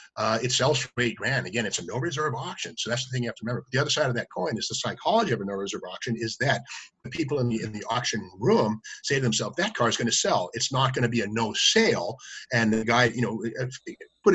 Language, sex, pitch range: English, male, 115-135 Hz